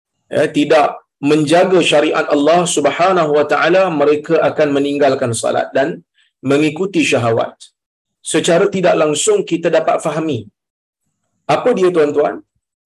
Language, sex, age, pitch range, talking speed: Malayalam, male, 40-59, 150-185 Hz, 110 wpm